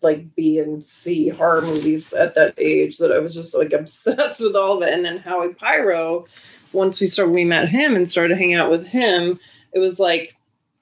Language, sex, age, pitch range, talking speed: English, female, 20-39, 155-205 Hz, 210 wpm